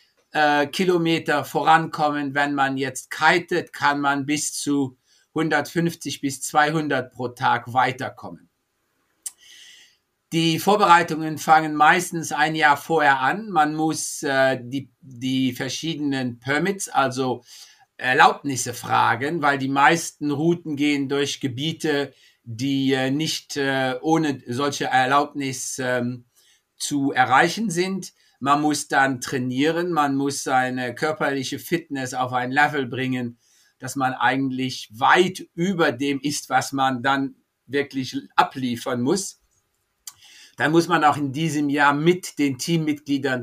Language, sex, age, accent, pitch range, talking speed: German, male, 50-69, German, 135-160 Hz, 115 wpm